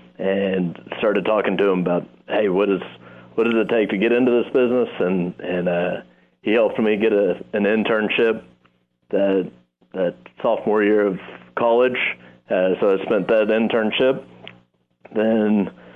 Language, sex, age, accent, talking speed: English, male, 30-49, American, 155 wpm